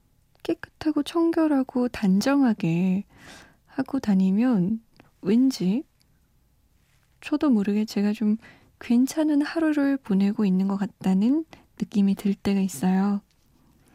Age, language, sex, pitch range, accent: 20-39, Korean, female, 195-270 Hz, native